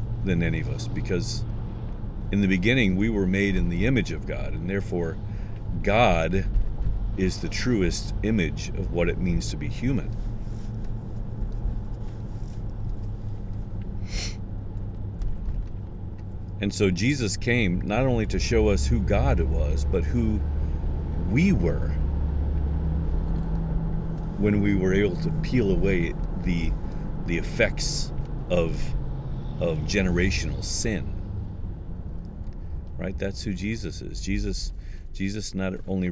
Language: English